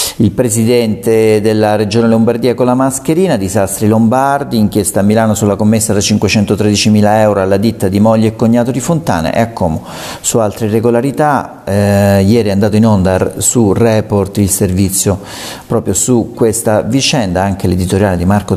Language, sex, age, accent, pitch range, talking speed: Italian, male, 40-59, native, 100-120 Hz, 170 wpm